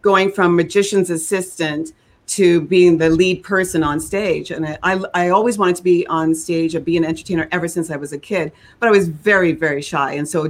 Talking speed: 225 wpm